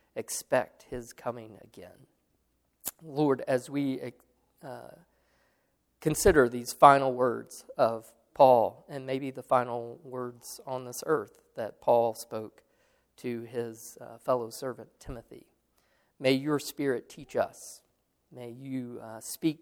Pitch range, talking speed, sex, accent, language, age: 115-135 Hz, 120 wpm, male, American, English, 40-59